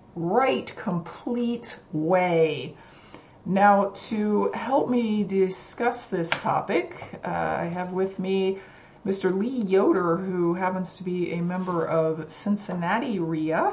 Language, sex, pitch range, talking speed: English, female, 170-195 Hz, 120 wpm